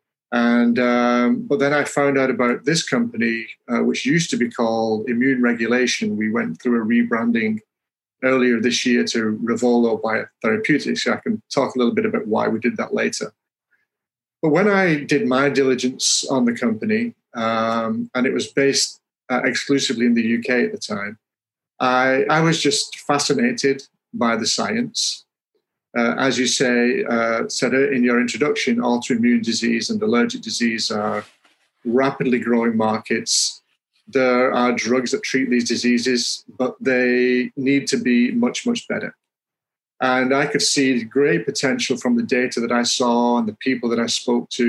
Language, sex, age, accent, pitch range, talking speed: English, male, 30-49, British, 120-140 Hz, 165 wpm